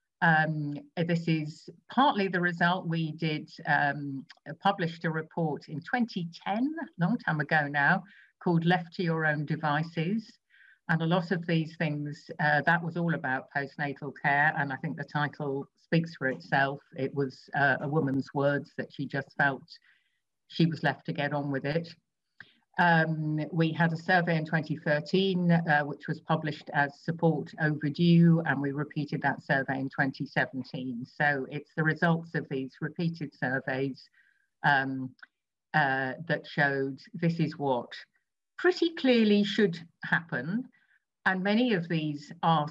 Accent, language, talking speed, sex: British, English, 155 wpm, female